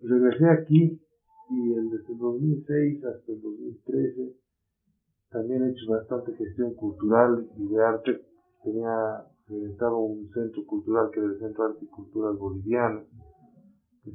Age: 40-59